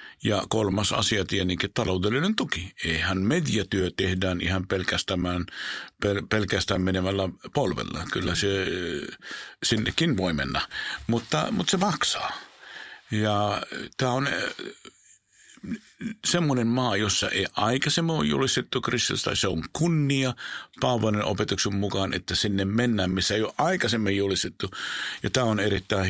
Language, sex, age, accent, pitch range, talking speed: Finnish, male, 50-69, native, 90-110 Hz, 120 wpm